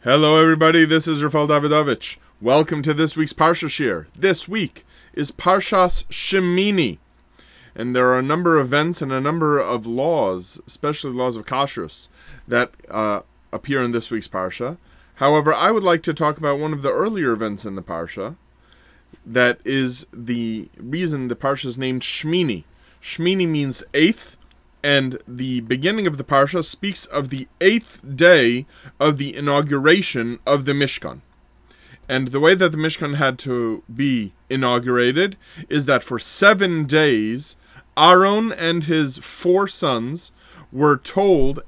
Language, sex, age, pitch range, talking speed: English, male, 20-39, 125-165 Hz, 155 wpm